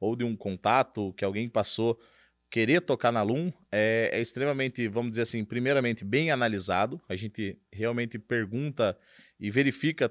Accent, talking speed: Brazilian, 155 wpm